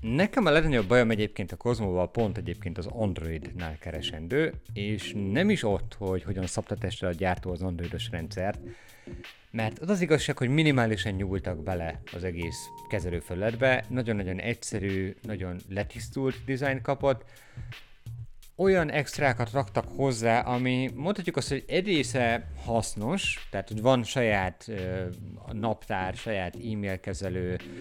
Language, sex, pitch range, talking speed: Hungarian, male, 95-125 Hz, 135 wpm